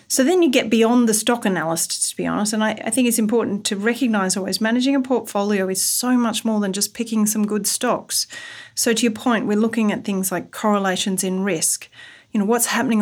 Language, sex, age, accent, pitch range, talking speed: English, female, 40-59, Australian, 190-235 Hz, 225 wpm